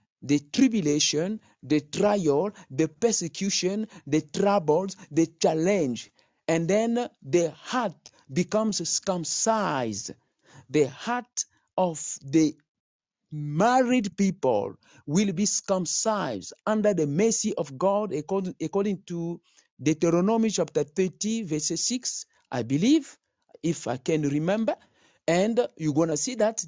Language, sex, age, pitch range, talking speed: English, male, 50-69, 160-220 Hz, 110 wpm